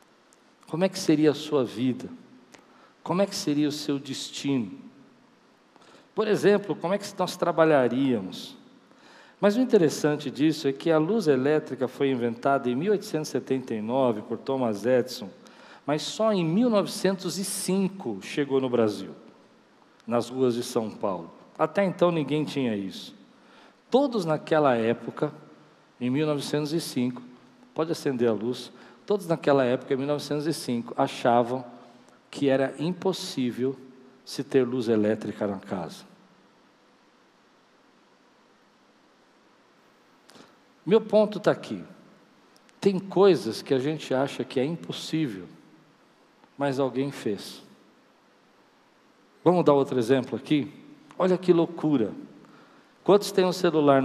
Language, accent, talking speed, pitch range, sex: Portuguese, Brazilian, 120 wpm, 130-185 Hz, male